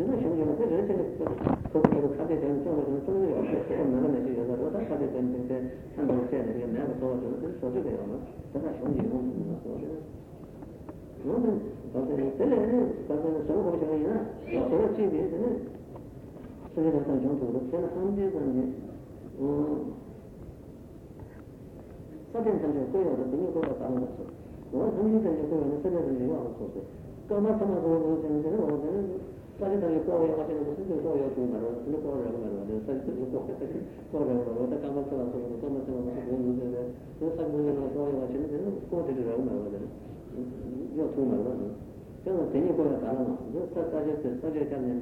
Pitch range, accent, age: 130-165 Hz, Indian, 50-69